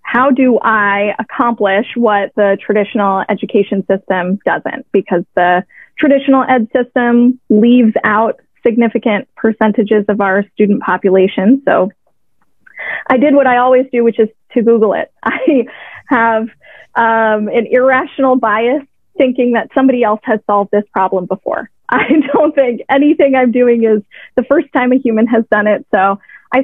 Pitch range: 210-255 Hz